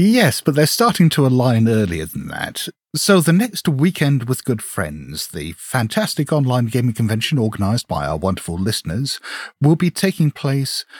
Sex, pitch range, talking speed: male, 105-145 Hz, 165 wpm